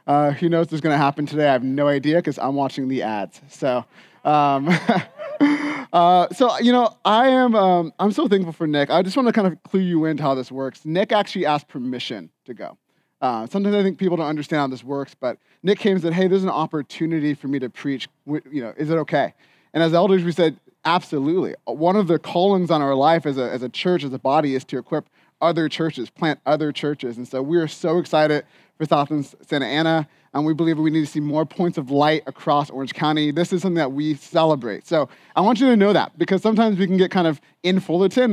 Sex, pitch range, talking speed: male, 150-185 Hz, 240 wpm